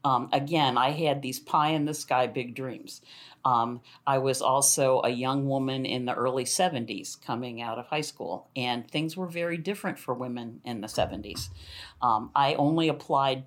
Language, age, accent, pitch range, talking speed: English, 50-69, American, 125-145 Hz, 170 wpm